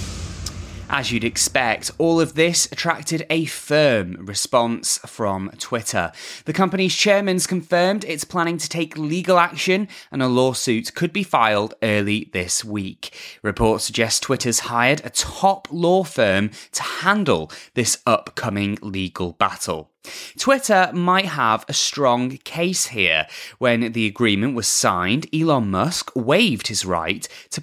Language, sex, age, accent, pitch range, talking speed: English, male, 20-39, British, 105-175 Hz, 135 wpm